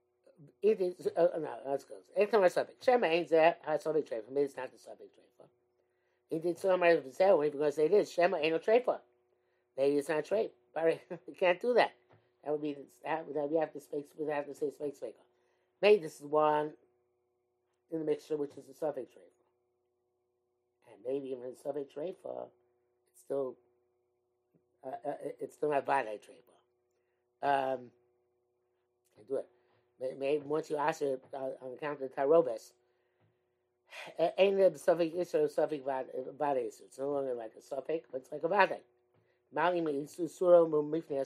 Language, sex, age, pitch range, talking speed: English, male, 60-79, 120-165 Hz, 170 wpm